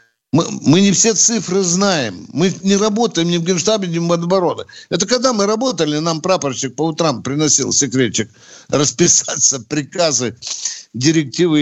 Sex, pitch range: male, 125-170 Hz